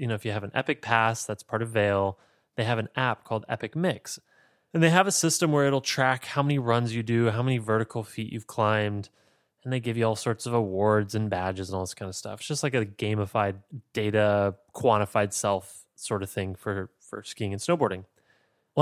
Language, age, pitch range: English, 20-39, 110-145 Hz